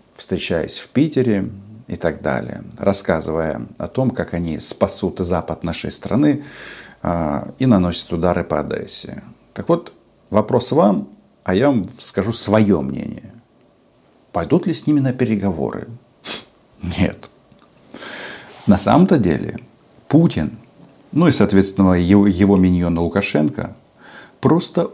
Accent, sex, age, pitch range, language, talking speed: native, male, 50-69, 90-115 Hz, Russian, 120 wpm